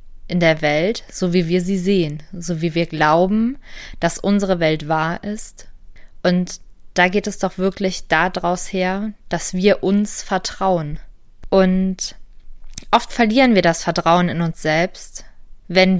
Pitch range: 165-195 Hz